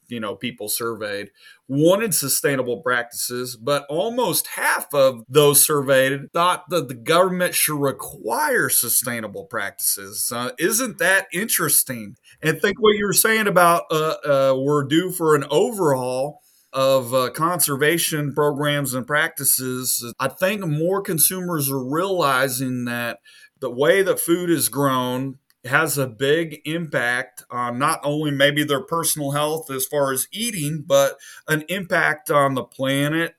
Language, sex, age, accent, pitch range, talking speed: English, male, 30-49, American, 130-165 Hz, 140 wpm